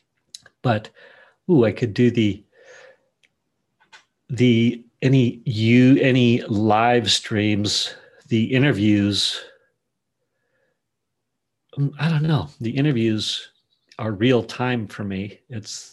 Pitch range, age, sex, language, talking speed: 105-130 Hz, 40-59, male, English, 95 wpm